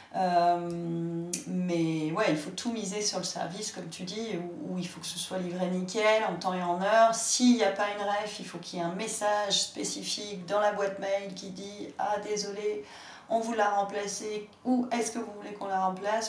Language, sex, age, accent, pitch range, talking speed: French, female, 30-49, French, 185-225 Hz, 220 wpm